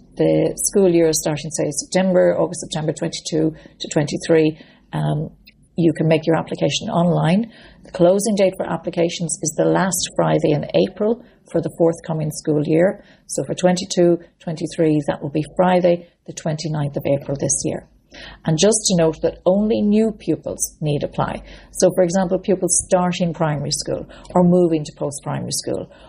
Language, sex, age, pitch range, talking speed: English, female, 40-59, 150-180 Hz, 165 wpm